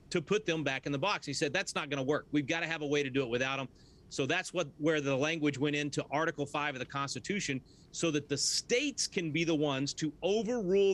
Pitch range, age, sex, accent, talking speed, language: 140-175 Hz, 40-59, male, American, 250 wpm, English